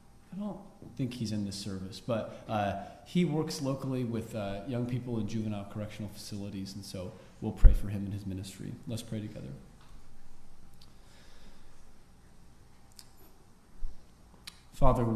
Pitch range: 105-120 Hz